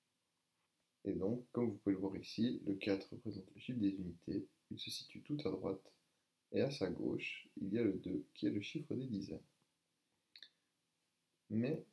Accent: French